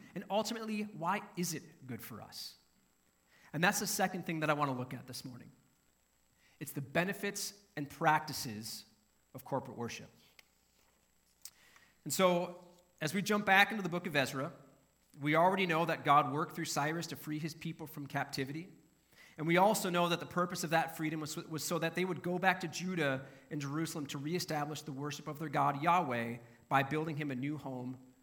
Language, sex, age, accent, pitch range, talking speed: English, male, 30-49, American, 130-170 Hz, 190 wpm